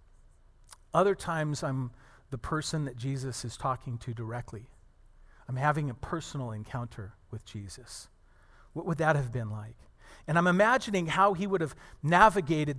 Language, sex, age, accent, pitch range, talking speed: English, male, 40-59, American, 115-170 Hz, 150 wpm